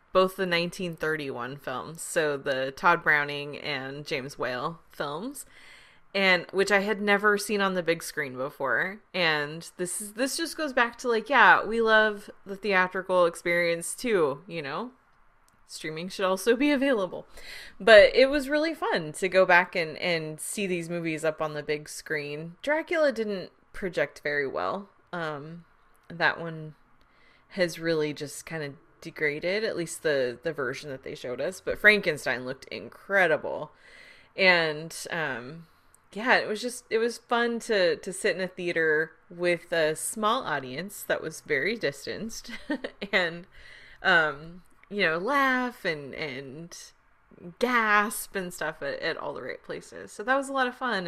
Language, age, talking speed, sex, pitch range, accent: English, 20-39, 160 wpm, female, 160-220 Hz, American